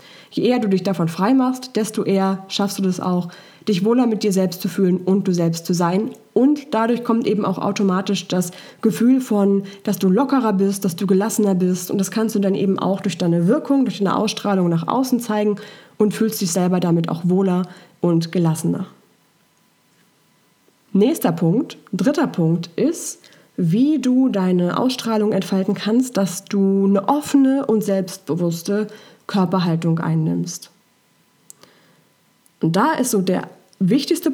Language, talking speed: German, 160 wpm